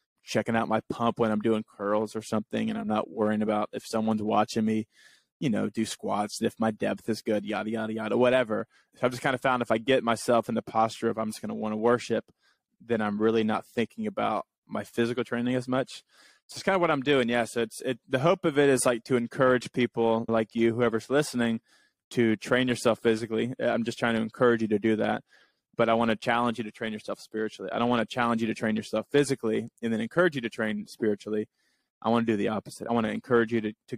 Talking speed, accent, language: 245 wpm, American, English